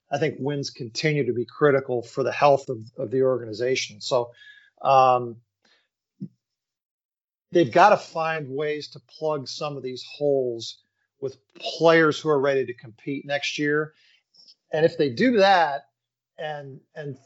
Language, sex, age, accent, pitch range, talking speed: English, male, 40-59, American, 130-165 Hz, 150 wpm